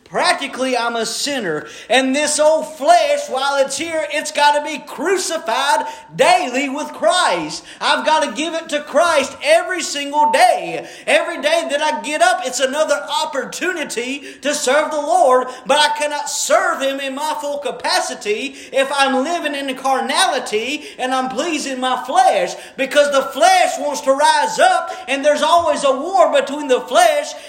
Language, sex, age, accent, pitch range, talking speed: English, male, 40-59, American, 270-320 Hz, 165 wpm